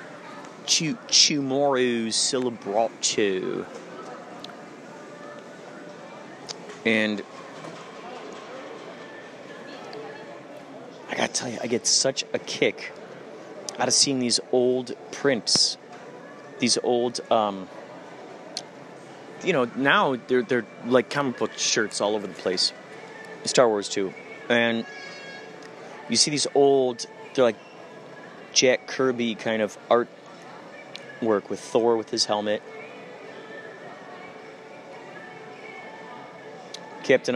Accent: American